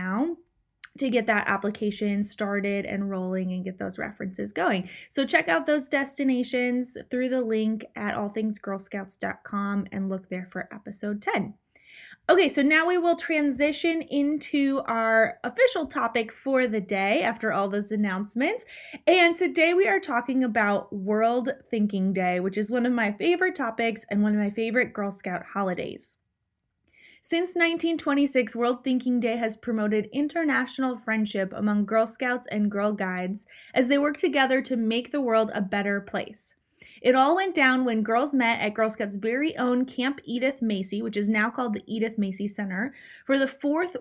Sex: female